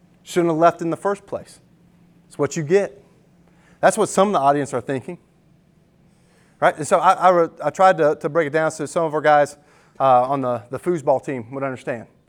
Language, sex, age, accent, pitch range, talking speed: English, male, 30-49, American, 160-190 Hz, 210 wpm